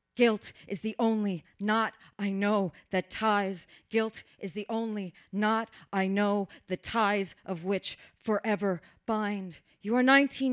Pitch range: 195-225 Hz